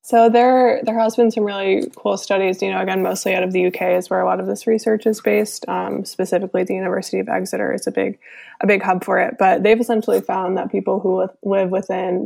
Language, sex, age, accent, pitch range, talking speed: English, female, 20-39, American, 180-210 Hz, 240 wpm